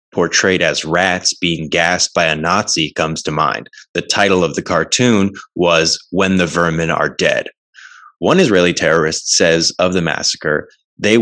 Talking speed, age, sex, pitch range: 160 wpm, 20-39, male, 80-100 Hz